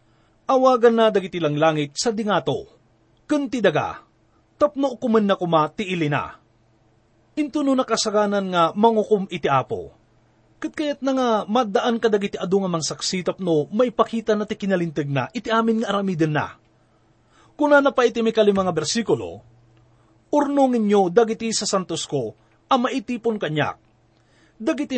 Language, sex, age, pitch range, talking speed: English, male, 30-49, 150-230 Hz, 130 wpm